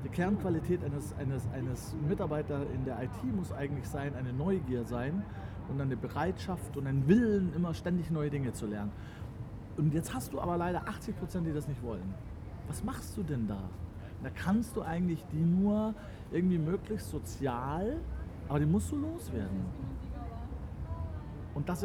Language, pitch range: German, 105-155 Hz